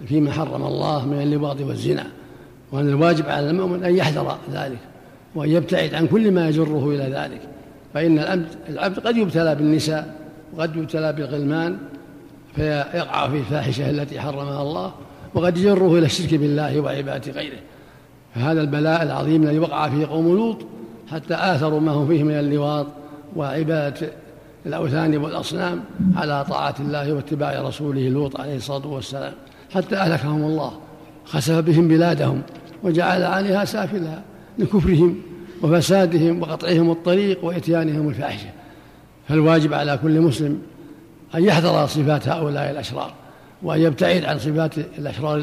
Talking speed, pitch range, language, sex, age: 130 wpm, 145-170 Hz, Arabic, male, 60-79